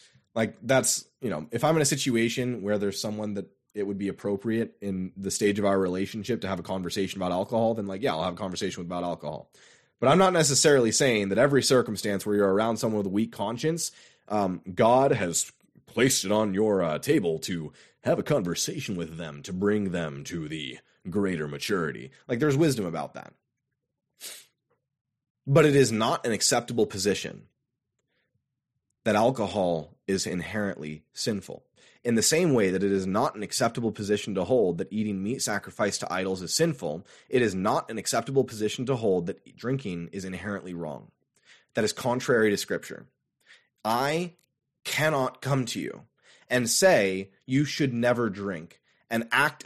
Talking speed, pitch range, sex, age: 175 wpm, 95-125 Hz, male, 20-39